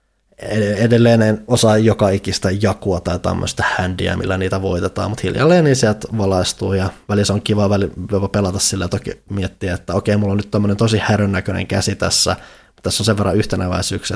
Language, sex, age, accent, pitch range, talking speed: Finnish, male, 20-39, native, 95-110 Hz, 185 wpm